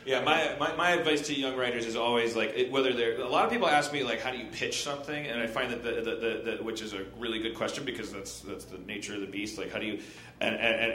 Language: English